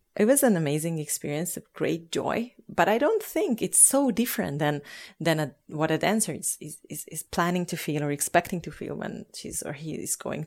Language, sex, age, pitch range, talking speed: English, female, 30-49, 160-210 Hz, 210 wpm